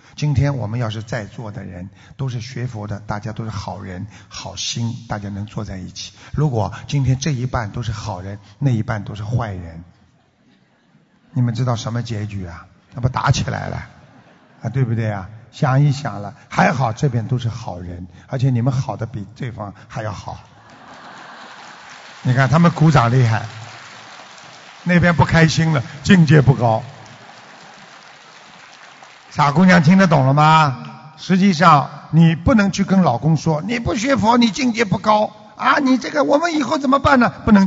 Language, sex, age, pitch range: Chinese, male, 50-69, 115-180 Hz